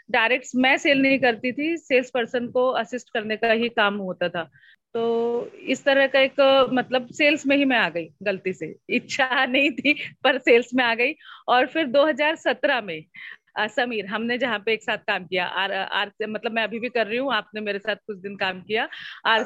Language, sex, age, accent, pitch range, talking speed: Hindi, female, 40-59, native, 220-270 Hz, 205 wpm